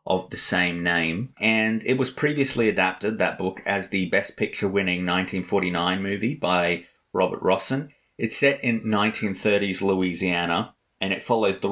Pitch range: 90-120 Hz